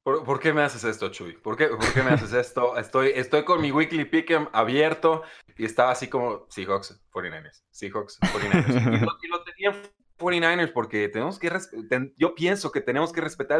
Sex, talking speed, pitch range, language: male, 200 wpm, 115-160 Hz, Spanish